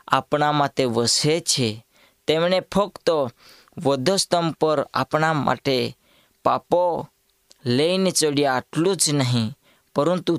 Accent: native